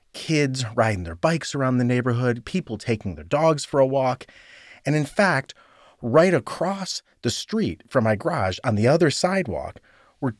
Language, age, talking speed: English, 30-49, 165 wpm